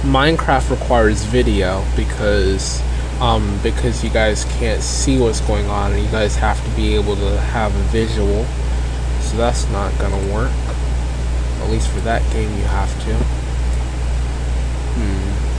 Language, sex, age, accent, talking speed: English, male, 20-39, American, 145 wpm